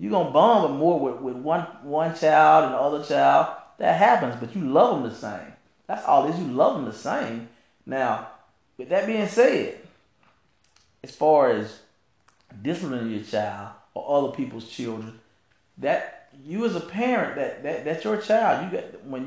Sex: male